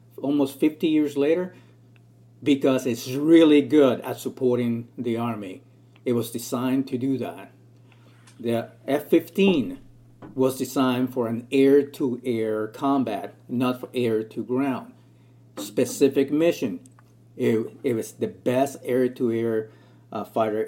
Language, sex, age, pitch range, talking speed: English, male, 50-69, 115-140 Hz, 120 wpm